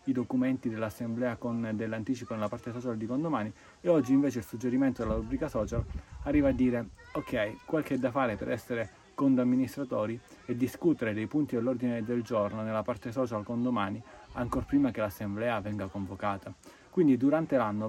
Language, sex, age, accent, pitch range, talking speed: Italian, male, 30-49, native, 110-125 Hz, 160 wpm